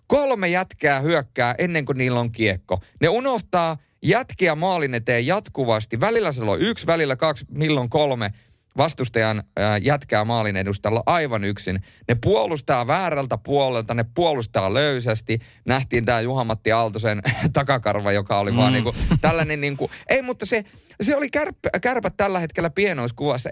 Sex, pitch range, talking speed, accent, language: male, 110-155 Hz, 135 wpm, native, Finnish